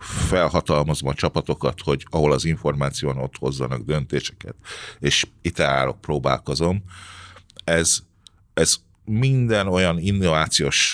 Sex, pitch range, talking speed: male, 70-90 Hz, 105 wpm